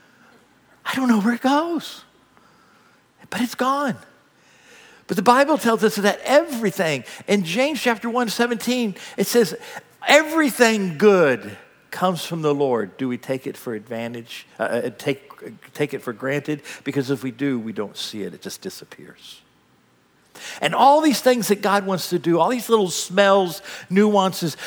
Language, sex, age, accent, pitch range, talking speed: English, male, 50-69, American, 165-240 Hz, 160 wpm